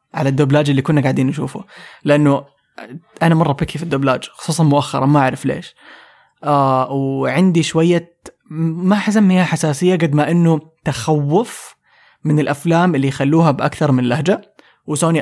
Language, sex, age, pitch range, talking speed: English, male, 20-39, 145-170 Hz, 140 wpm